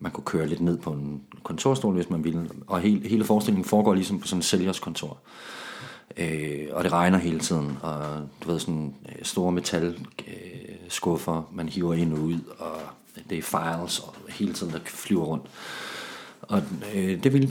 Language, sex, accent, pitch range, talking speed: Danish, male, native, 80-105 Hz, 175 wpm